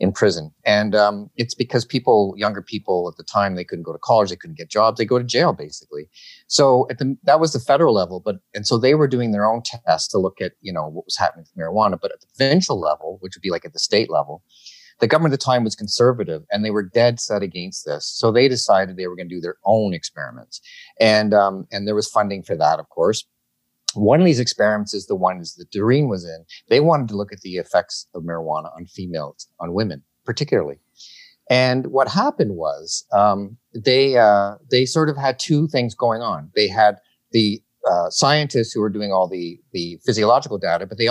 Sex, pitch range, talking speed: male, 95-125 Hz, 230 wpm